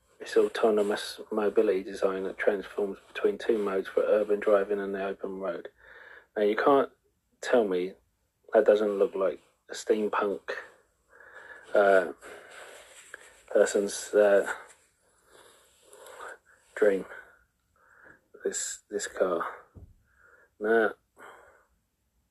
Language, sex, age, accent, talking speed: English, male, 40-59, British, 95 wpm